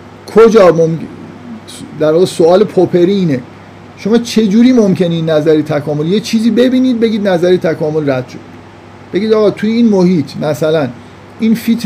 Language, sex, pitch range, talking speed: Persian, male, 140-190 Hz, 145 wpm